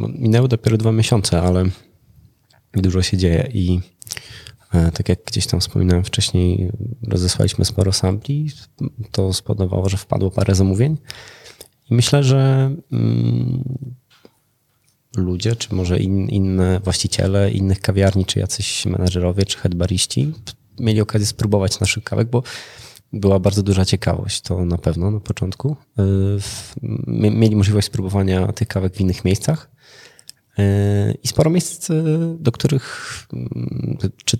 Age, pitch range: 20-39, 90-120 Hz